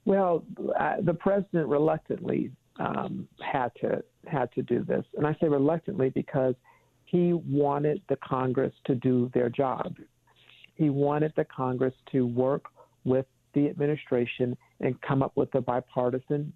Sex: male